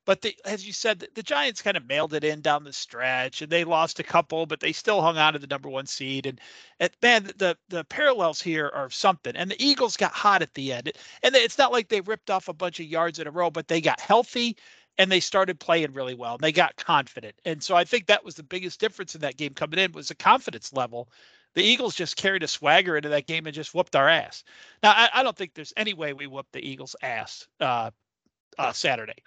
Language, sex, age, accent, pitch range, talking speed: English, male, 40-59, American, 160-215 Hz, 250 wpm